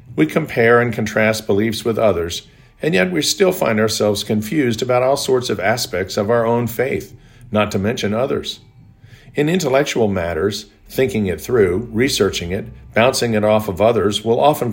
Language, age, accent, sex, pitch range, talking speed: English, 50-69, American, male, 100-120 Hz, 170 wpm